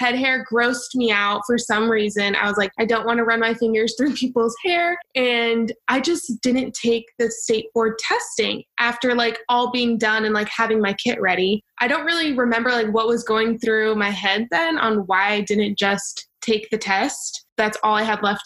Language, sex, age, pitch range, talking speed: English, female, 20-39, 215-245 Hz, 215 wpm